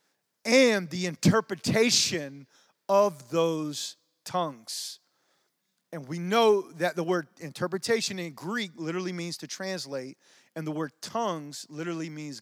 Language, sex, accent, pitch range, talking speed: English, male, American, 155-195 Hz, 120 wpm